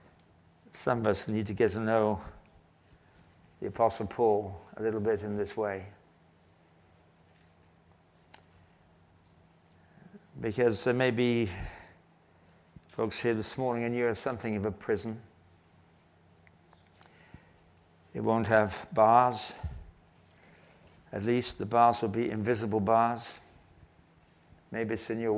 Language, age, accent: English, 60-79, British